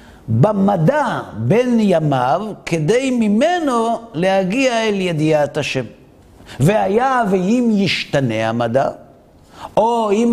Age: 50-69